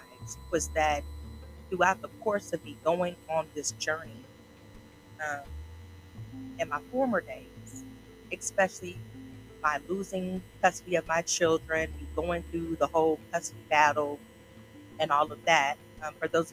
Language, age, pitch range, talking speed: English, 40-59, 110-170 Hz, 130 wpm